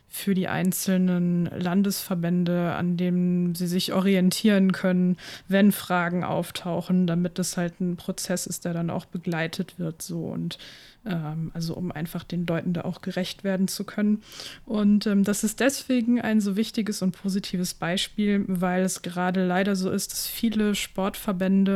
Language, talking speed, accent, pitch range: German, 160 wpm, German, 180-200 Hz